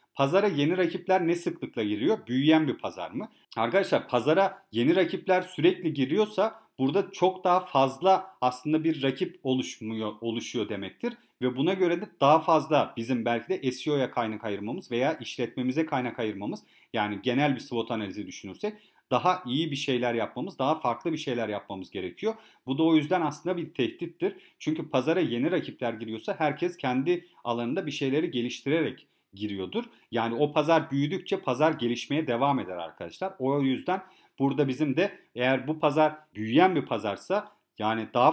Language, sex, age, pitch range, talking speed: Turkish, male, 40-59, 120-170 Hz, 155 wpm